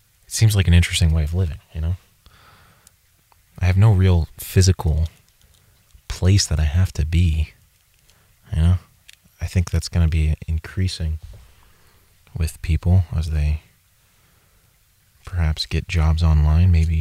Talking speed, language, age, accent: 135 wpm, English, 30-49, American